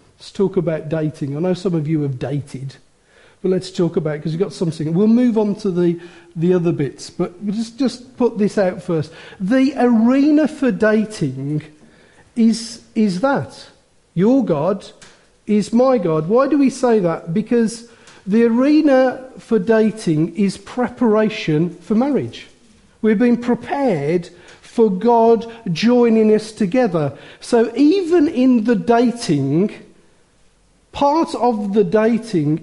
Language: English